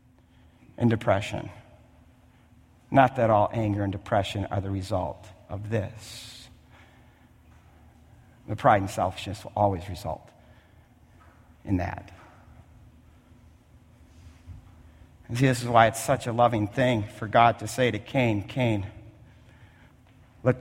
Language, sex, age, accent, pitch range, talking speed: English, male, 50-69, American, 95-125 Hz, 115 wpm